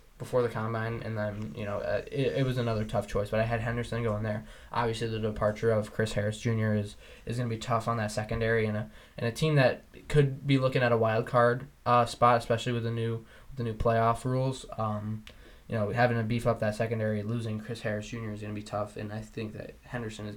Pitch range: 110-120 Hz